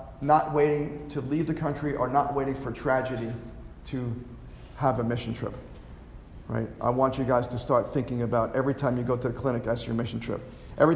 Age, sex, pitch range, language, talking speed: 40-59, male, 130-165 Hz, English, 205 wpm